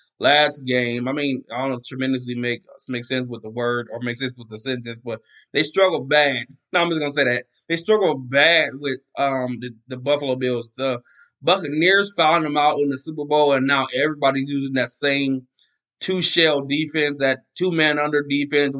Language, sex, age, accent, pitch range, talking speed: English, male, 20-39, American, 135-170 Hz, 200 wpm